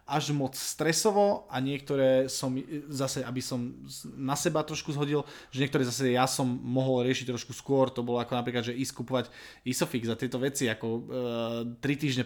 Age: 20-39